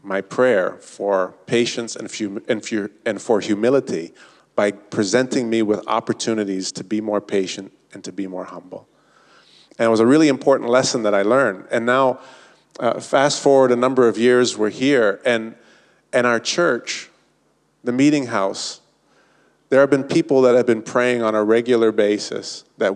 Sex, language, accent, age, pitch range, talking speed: male, English, American, 40-59, 105-125 Hz, 160 wpm